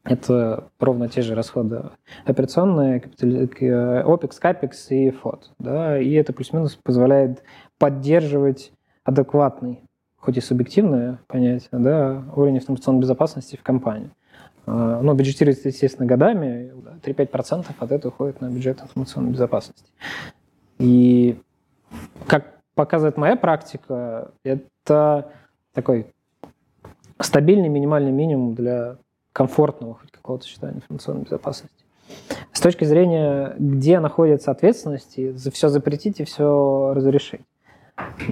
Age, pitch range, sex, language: 20-39, 130-145 Hz, male, Russian